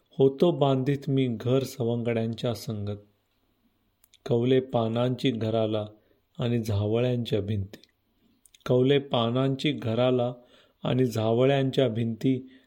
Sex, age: male, 40-59